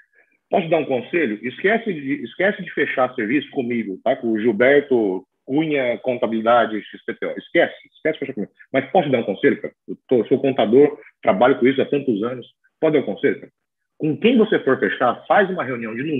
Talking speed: 195 wpm